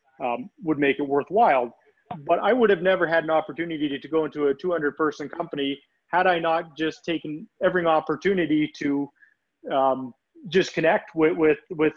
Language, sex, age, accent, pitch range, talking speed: English, male, 30-49, American, 150-180 Hz, 175 wpm